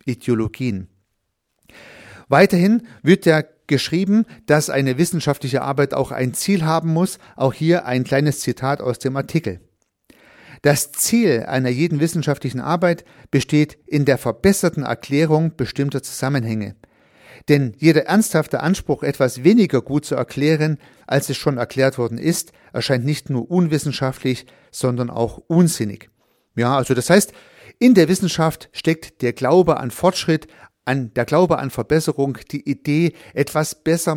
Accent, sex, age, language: German, male, 40-59, German